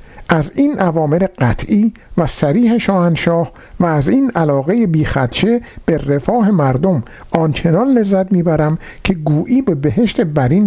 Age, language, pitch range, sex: 50-69, Persian, 140-215 Hz, male